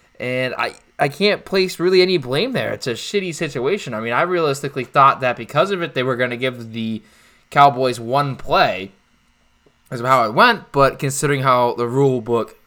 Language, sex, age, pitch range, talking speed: English, male, 20-39, 120-165 Hz, 200 wpm